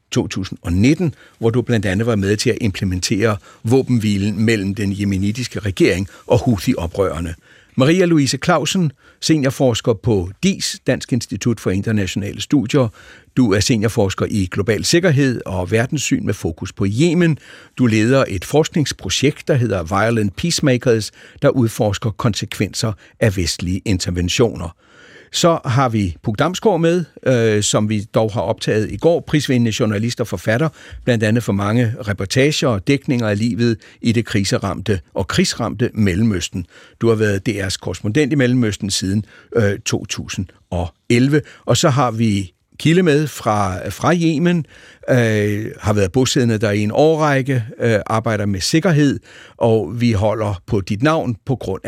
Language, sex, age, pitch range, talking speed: Danish, male, 60-79, 100-130 Hz, 145 wpm